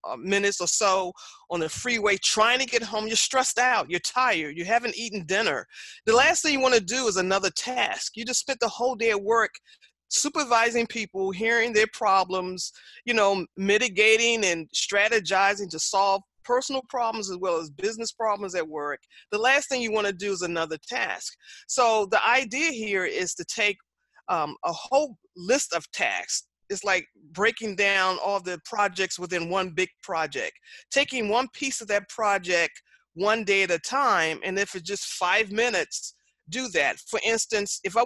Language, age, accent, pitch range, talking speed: English, 30-49, American, 180-230 Hz, 185 wpm